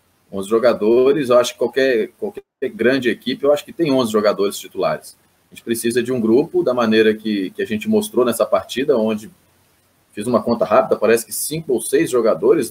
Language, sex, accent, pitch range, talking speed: Portuguese, male, Brazilian, 105-140 Hz, 200 wpm